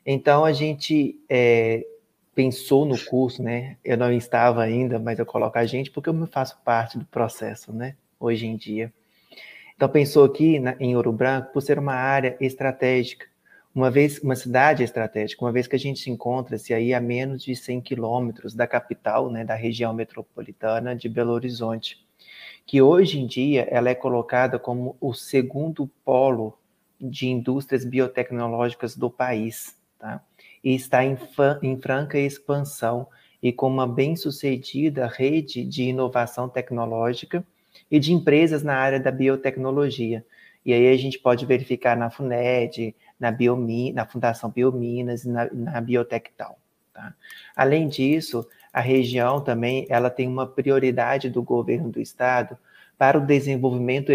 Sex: male